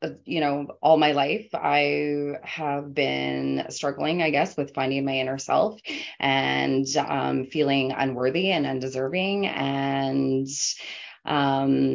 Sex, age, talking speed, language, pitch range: female, 20-39, 120 wpm, English, 130-145 Hz